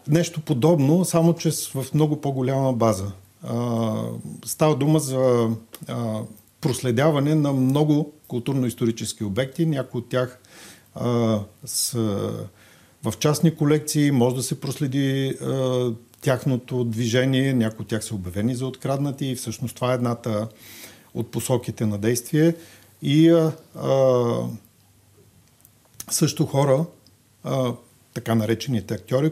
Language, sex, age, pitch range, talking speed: Bulgarian, male, 50-69, 115-135 Hz, 115 wpm